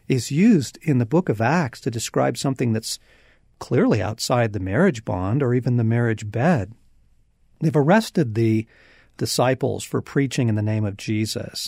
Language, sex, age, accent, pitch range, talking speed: English, male, 50-69, American, 110-150 Hz, 165 wpm